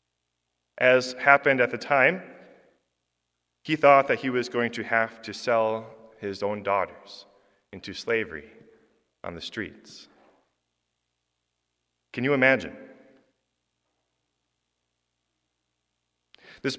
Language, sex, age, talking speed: English, male, 30-49, 95 wpm